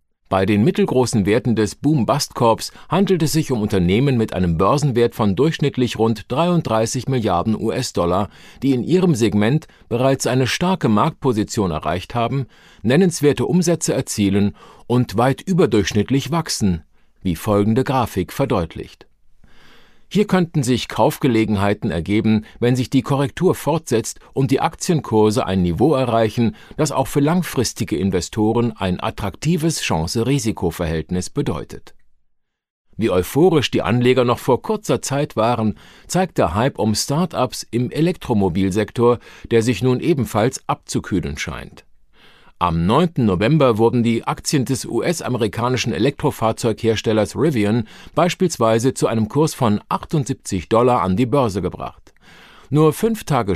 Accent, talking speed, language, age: German, 125 wpm, German, 50-69